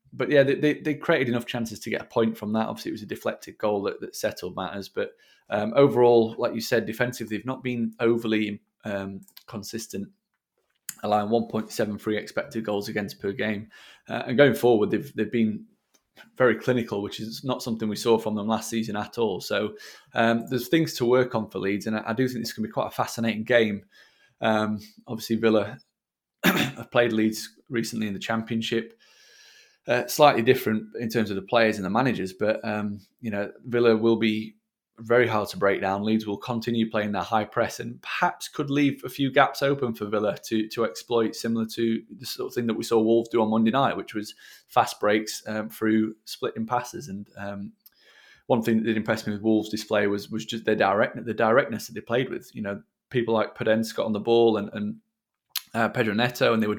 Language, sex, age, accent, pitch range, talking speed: English, male, 20-39, British, 105-125 Hz, 210 wpm